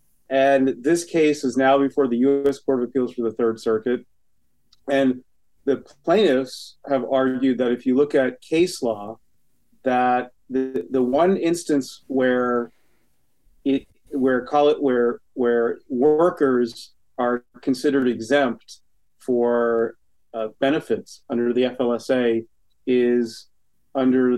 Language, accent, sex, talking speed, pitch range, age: English, American, male, 125 wpm, 115-140 Hz, 40-59